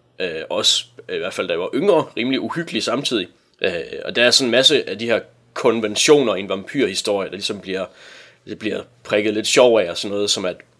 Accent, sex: native, male